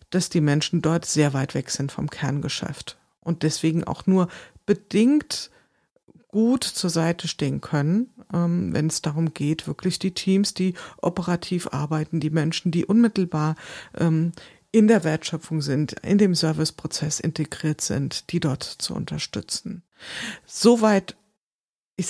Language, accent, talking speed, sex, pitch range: German, German, 135 wpm, female, 155-190 Hz